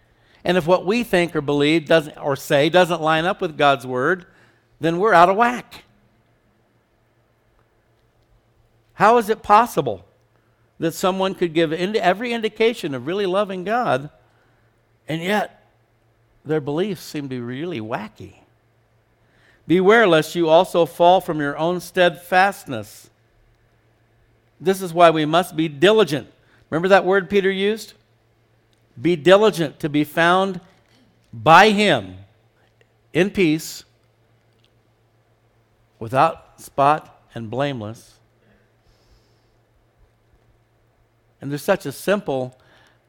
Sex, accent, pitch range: male, American, 115-175 Hz